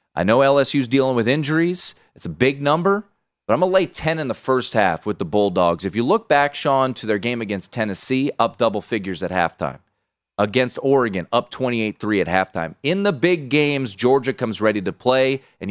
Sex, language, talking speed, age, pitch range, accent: male, English, 210 wpm, 30-49, 110-150 Hz, American